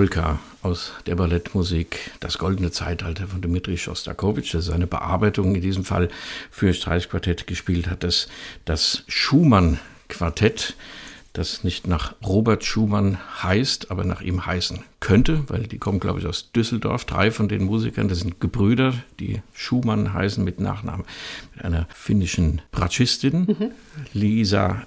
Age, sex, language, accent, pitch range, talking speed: 60-79, male, German, German, 90-105 Hz, 140 wpm